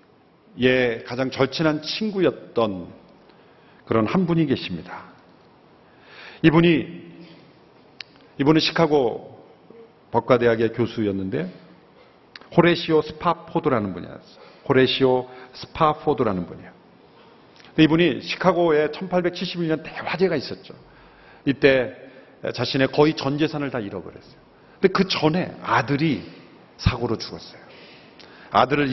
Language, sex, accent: Korean, male, native